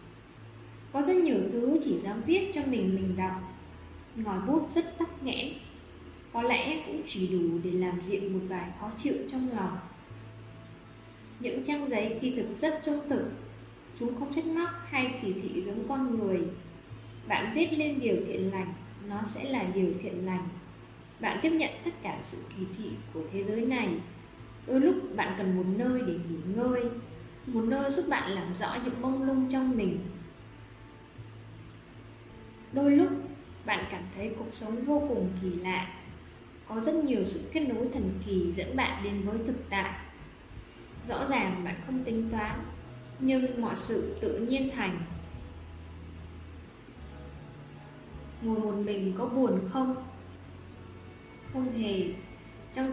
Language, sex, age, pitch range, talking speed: Vietnamese, female, 10-29, 180-255 Hz, 155 wpm